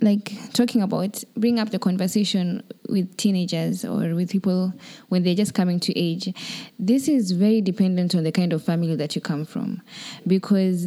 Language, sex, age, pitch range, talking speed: English, female, 20-39, 170-215 Hz, 175 wpm